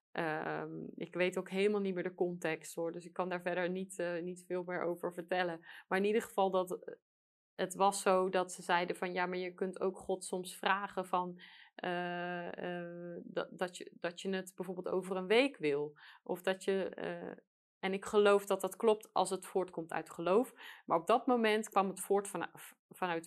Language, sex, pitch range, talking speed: Dutch, female, 170-210 Hz, 205 wpm